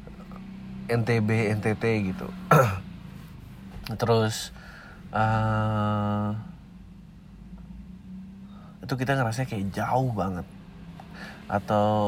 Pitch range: 105-140 Hz